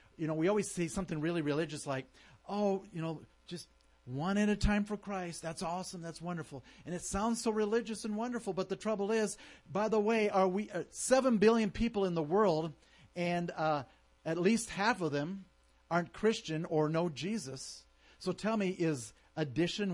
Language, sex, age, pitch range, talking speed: English, male, 50-69, 155-215 Hz, 190 wpm